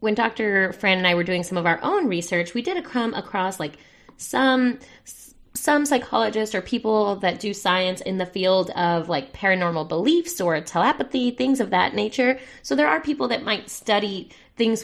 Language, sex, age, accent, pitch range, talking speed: English, female, 20-39, American, 180-225 Hz, 185 wpm